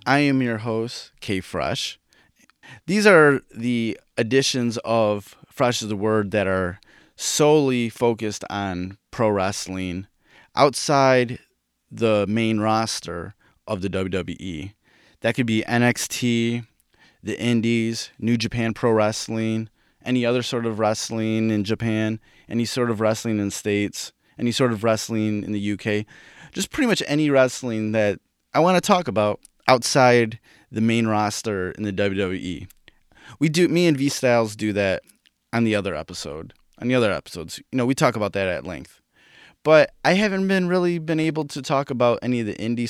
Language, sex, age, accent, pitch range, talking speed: English, male, 30-49, American, 105-130 Hz, 160 wpm